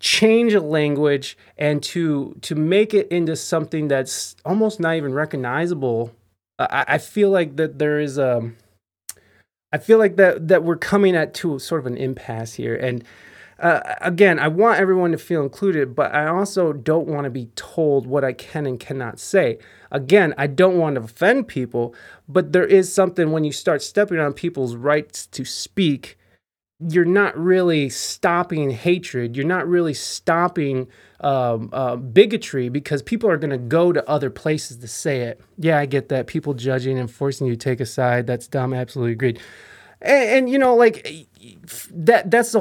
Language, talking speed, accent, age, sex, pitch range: English, 180 wpm, American, 30-49, male, 130-180 Hz